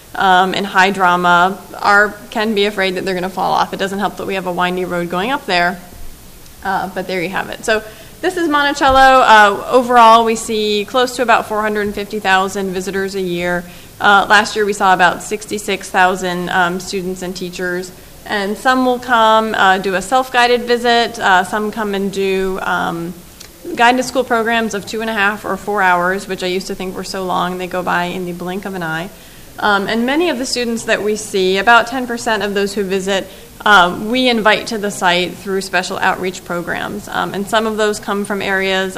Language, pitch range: English, 185-215 Hz